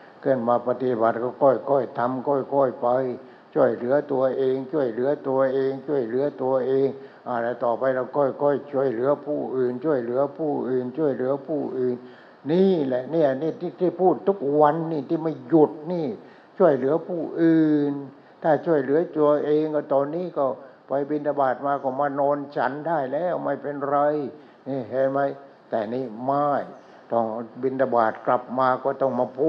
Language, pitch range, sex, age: English, 125-145 Hz, male, 60-79